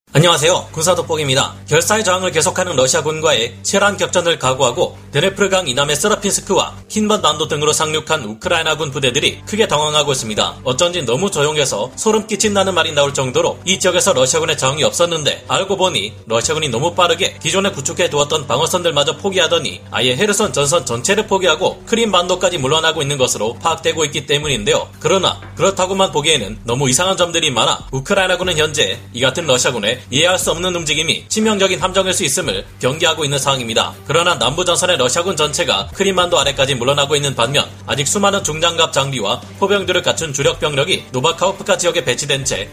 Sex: male